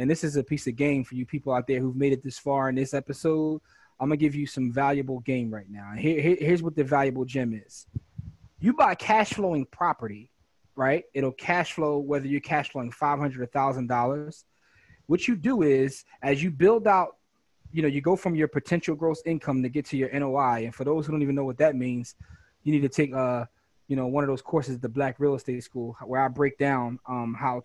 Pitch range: 125-160 Hz